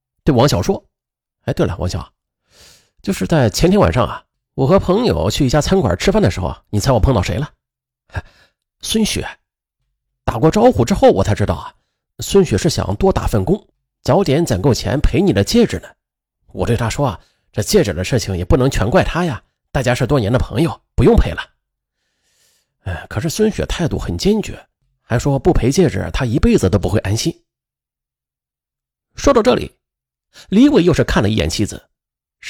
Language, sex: Chinese, male